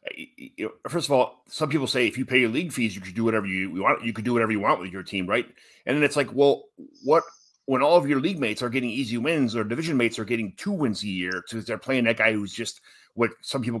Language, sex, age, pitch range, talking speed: English, male, 30-49, 105-130 Hz, 275 wpm